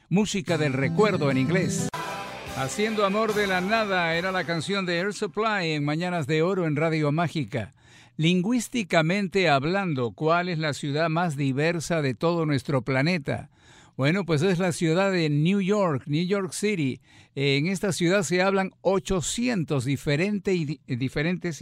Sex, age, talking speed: male, 50-69, 150 wpm